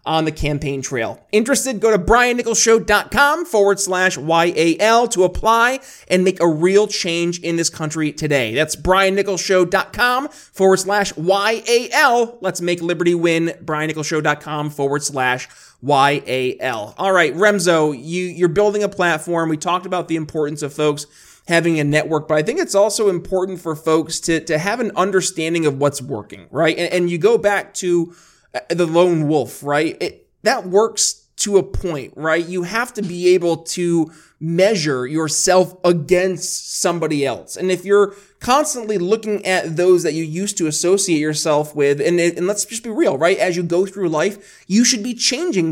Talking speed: 165 wpm